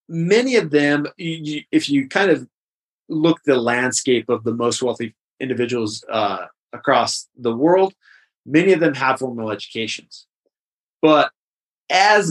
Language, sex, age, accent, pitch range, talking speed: English, male, 30-49, American, 115-160 Hz, 130 wpm